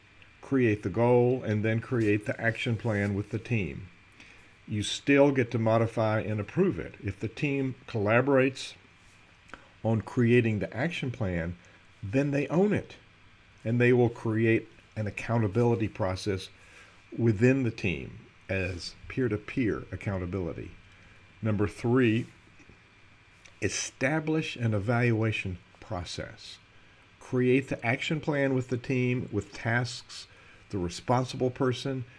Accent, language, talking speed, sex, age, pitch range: American, English, 120 wpm, male, 50-69, 100-125 Hz